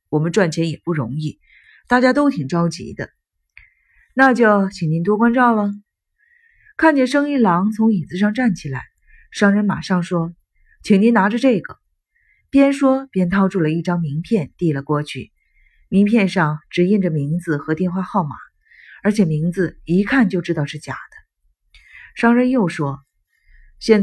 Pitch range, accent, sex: 160-230 Hz, native, female